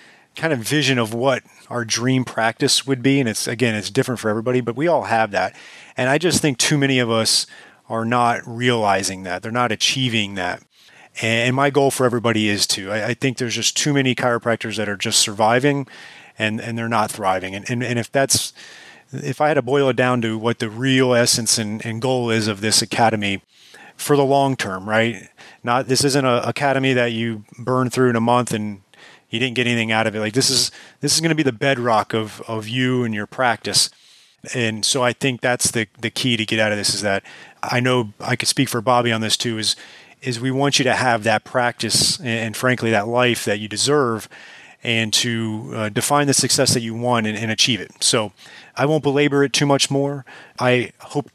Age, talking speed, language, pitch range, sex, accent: 30-49, 220 wpm, English, 110-130 Hz, male, American